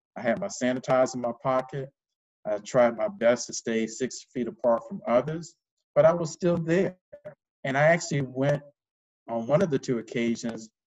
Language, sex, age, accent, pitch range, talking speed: English, male, 50-69, American, 115-170 Hz, 180 wpm